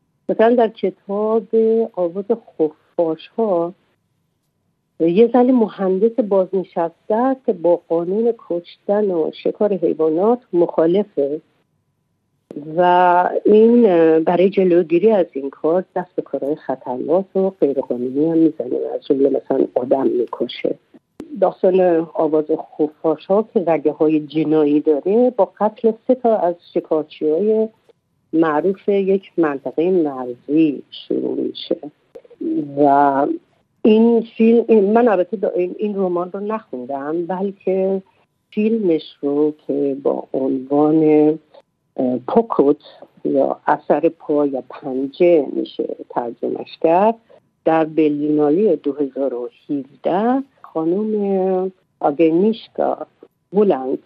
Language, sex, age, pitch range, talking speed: Persian, female, 50-69, 155-215 Hz, 100 wpm